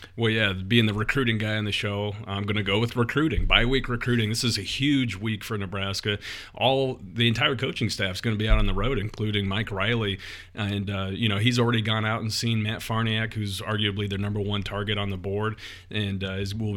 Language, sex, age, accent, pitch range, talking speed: English, male, 40-59, American, 100-110 Hz, 235 wpm